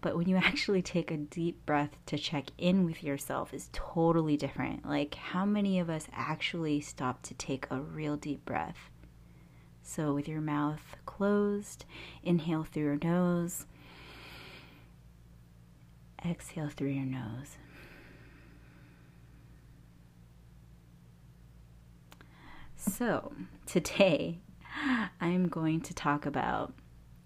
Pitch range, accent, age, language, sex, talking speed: 130-180 Hz, American, 30-49, English, female, 110 wpm